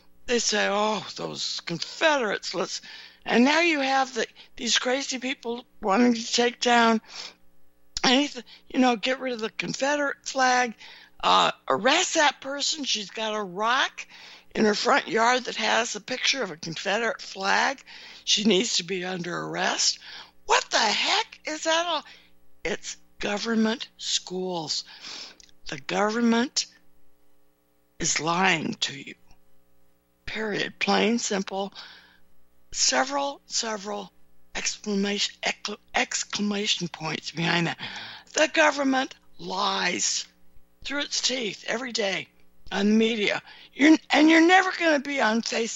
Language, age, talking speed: English, 60-79, 125 wpm